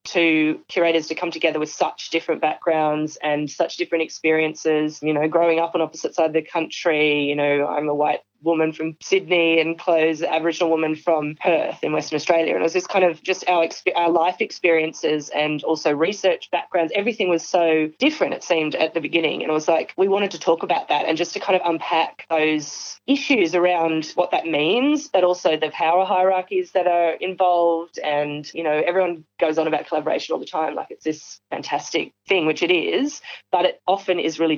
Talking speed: 205 wpm